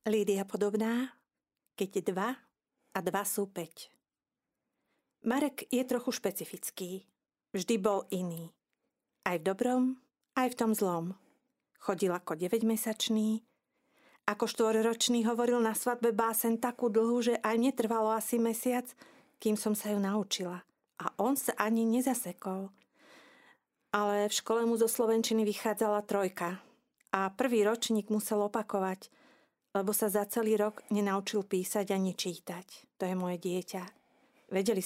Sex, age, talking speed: female, 40-59, 130 wpm